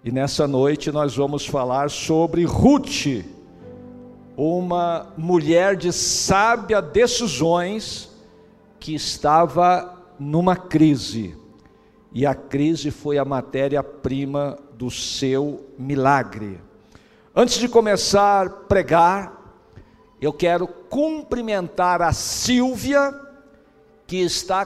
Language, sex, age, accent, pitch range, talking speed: Portuguese, male, 60-79, Brazilian, 160-220 Hz, 95 wpm